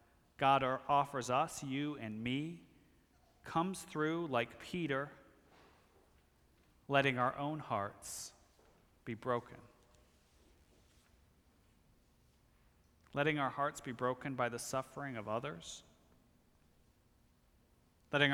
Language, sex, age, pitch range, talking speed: English, male, 40-59, 115-145 Hz, 90 wpm